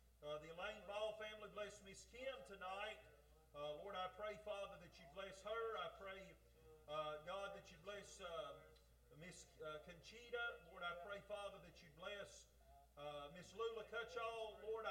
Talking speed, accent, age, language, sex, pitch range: 160 wpm, American, 40-59, English, male, 185-225 Hz